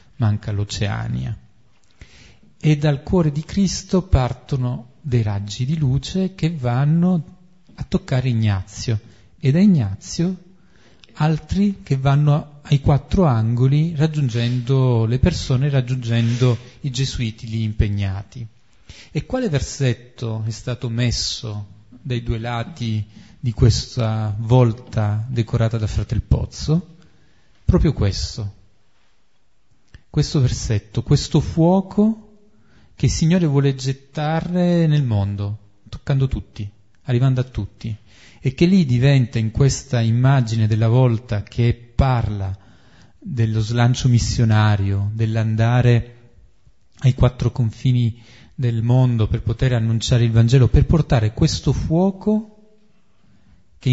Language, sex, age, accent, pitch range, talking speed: Italian, male, 40-59, native, 110-145 Hz, 110 wpm